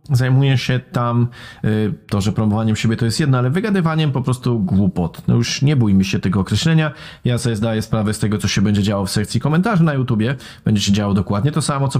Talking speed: 230 wpm